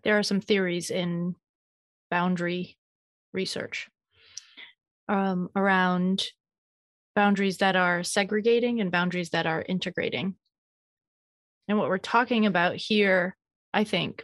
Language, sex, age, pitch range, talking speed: English, female, 30-49, 185-220 Hz, 110 wpm